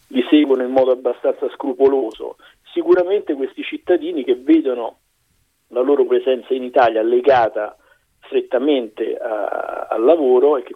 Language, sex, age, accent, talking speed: Italian, male, 50-69, native, 125 wpm